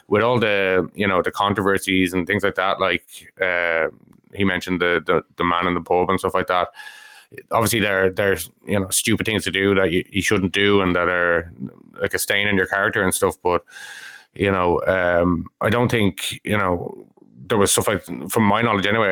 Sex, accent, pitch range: male, Irish, 90-100 Hz